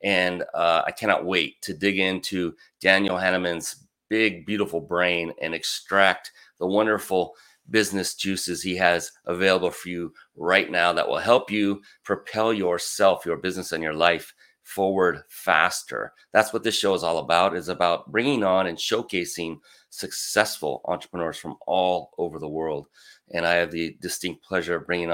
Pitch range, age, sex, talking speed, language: 85-105 Hz, 30-49, male, 160 wpm, English